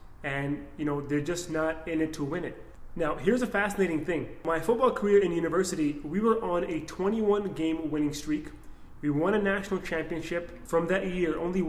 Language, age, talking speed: English, 20-39, 195 wpm